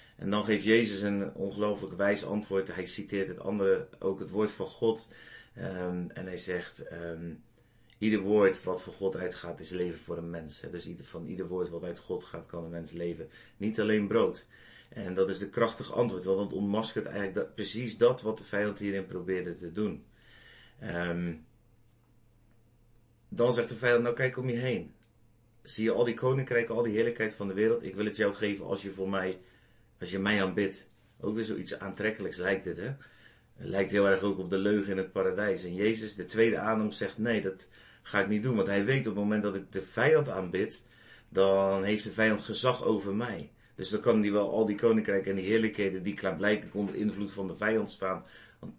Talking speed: 205 wpm